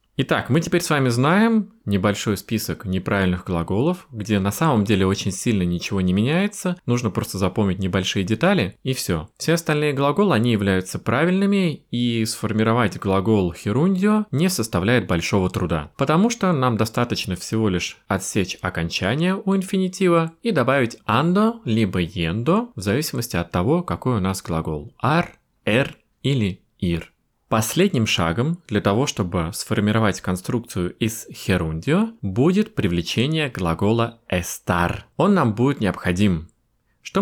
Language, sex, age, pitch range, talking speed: Russian, male, 20-39, 95-150 Hz, 140 wpm